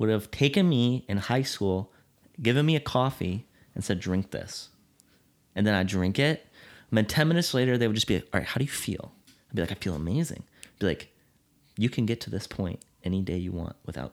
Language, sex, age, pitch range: English, male, 30-49, 95-115 Hz